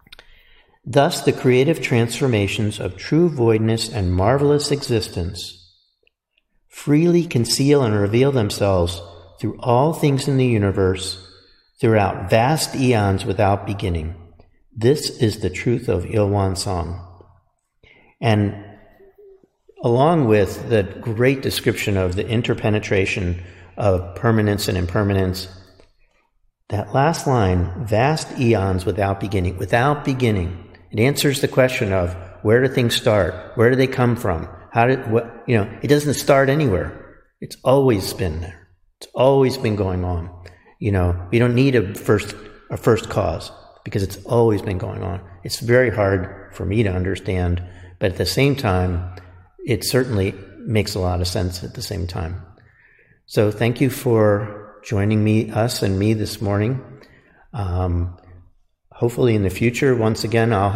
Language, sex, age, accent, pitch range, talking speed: English, male, 50-69, American, 95-120 Hz, 145 wpm